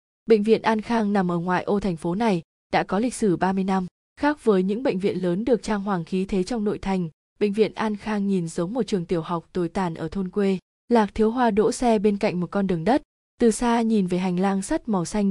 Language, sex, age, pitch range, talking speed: Vietnamese, female, 20-39, 185-225 Hz, 260 wpm